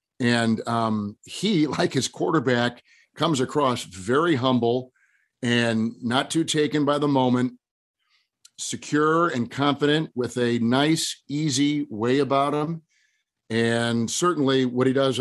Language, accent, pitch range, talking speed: English, American, 120-145 Hz, 125 wpm